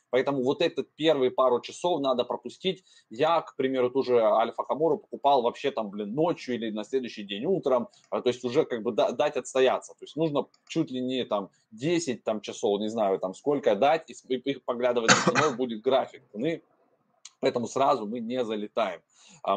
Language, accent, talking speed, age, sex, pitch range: Russian, native, 195 wpm, 20-39, male, 115-155 Hz